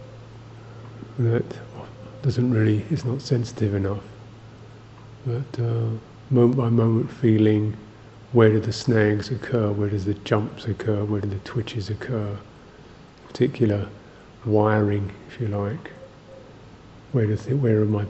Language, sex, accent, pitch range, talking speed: English, male, British, 105-120 Hz, 125 wpm